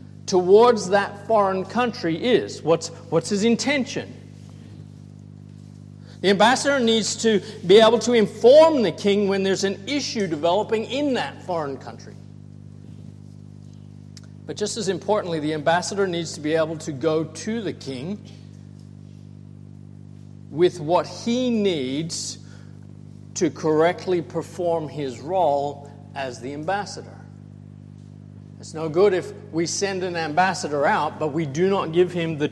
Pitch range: 130-195 Hz